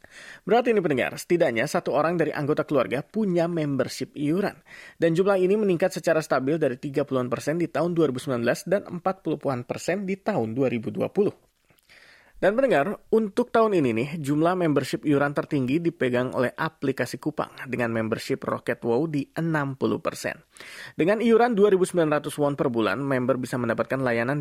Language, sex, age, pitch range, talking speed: Indonesian, male, 20-39, 130-180 Hz, 150 wpm